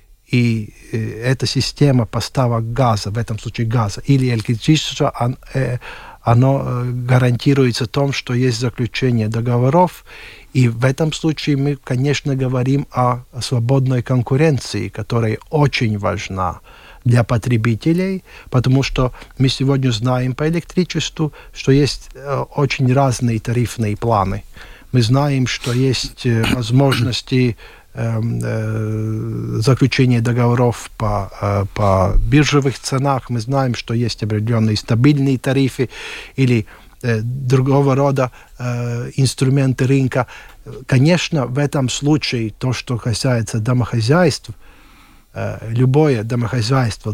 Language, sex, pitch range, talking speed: Russian, male, 115-135 Hz, 100 wpm